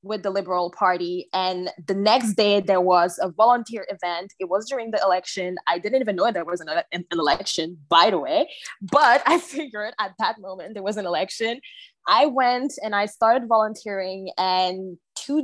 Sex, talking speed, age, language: female, 185 wpm, 20-39, French